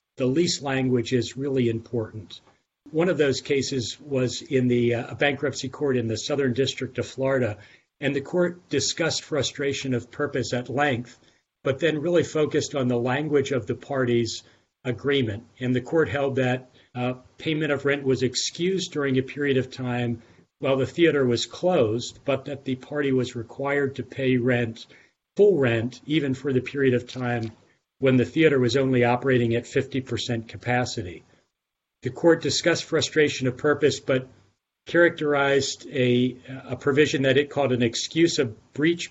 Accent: American